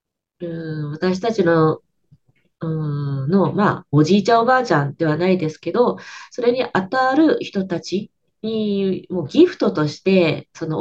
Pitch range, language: 160-245 Hz, Japanese